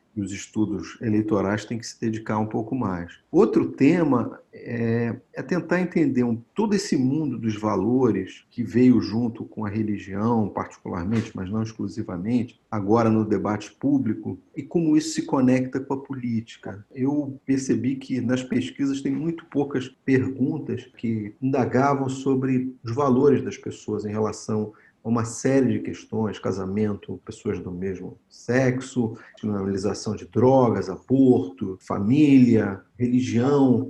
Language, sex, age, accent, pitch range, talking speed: Portuguese, male, 50-69, Brazilian, 110-135 Hz, 135 wpm